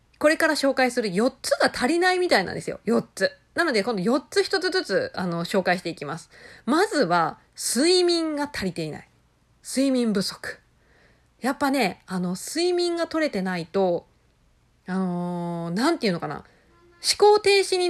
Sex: female